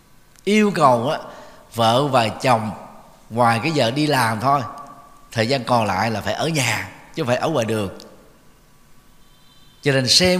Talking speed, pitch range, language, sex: 160 wpm, 115-145 Hz, Vietnamese, male